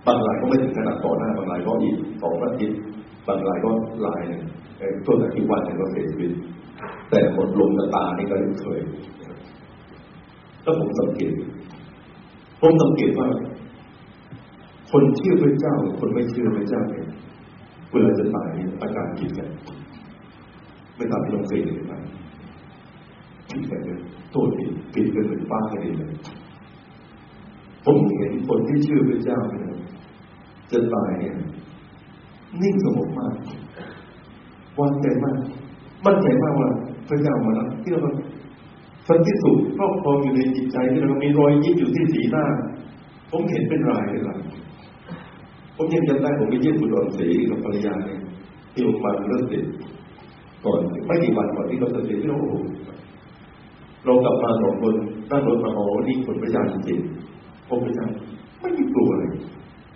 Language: Thai